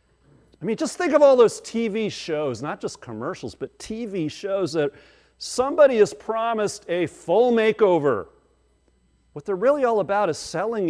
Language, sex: English, male